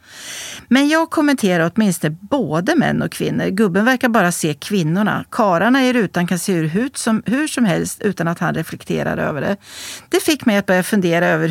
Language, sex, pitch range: Swedish, female, 170-270 Hz